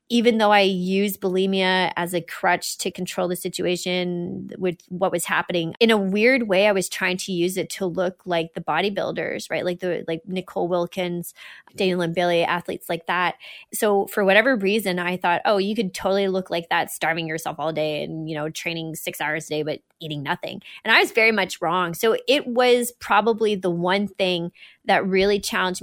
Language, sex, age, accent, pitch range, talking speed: English, female, 20-39, American, 175-200 Hz, 200 wpm